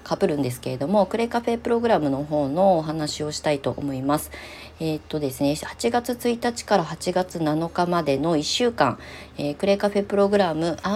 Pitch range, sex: 145-200 Hz, female